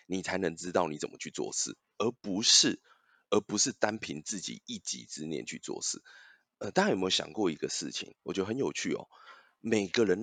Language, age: Chinese, 20-39